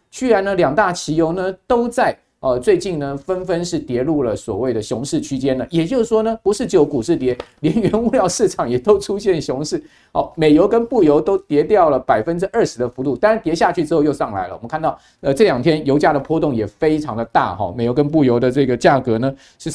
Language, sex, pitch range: Chinese, male, 145-210 Hz